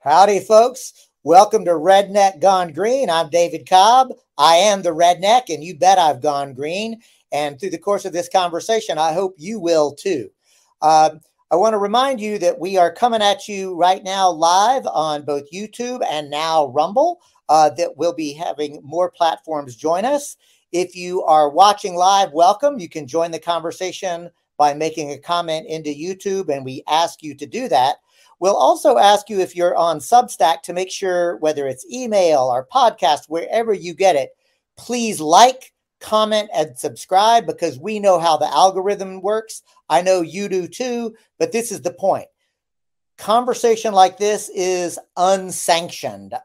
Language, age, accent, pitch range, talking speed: English, 50-69, American, 155-205 Hz, 170 wpm